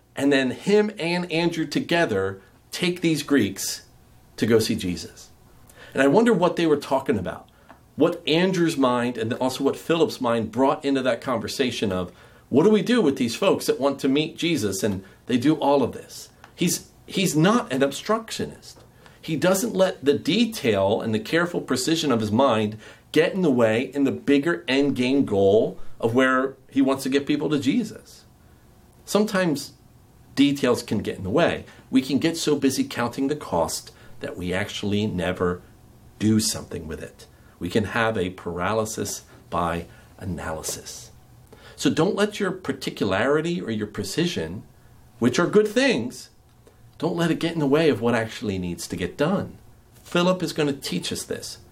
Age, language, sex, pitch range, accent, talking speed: 40-59, English, male, 115-160 Hz, American, 175 wpm